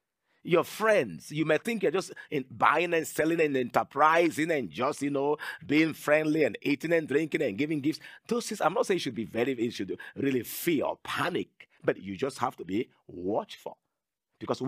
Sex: male